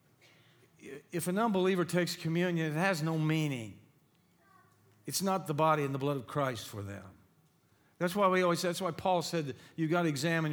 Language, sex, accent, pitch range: English, male, American, 145-175 Hz